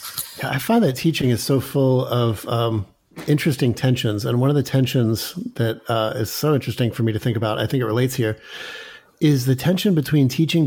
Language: English